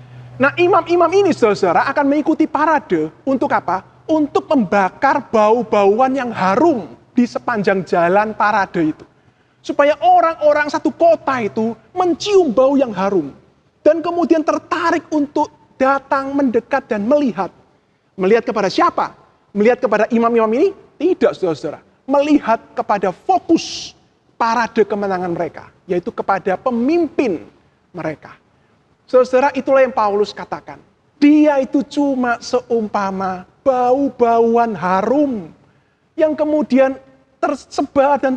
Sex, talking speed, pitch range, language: male, 110 wpm, 205-290 Hz, Indonesian